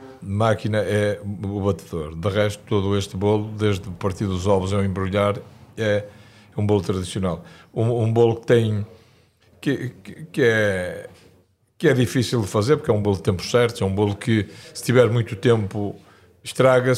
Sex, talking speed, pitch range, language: male, 175 wpm, 95-115 Hz, Portuguese